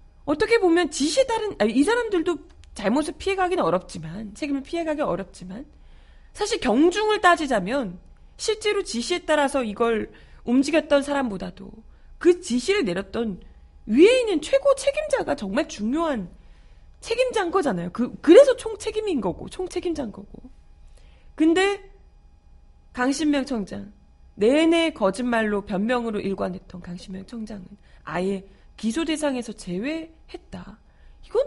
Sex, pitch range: female, 195-320 Hz